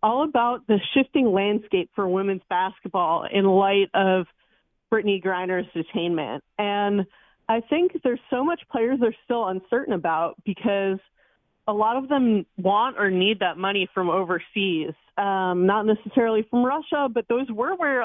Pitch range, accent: 200-245 Hz, American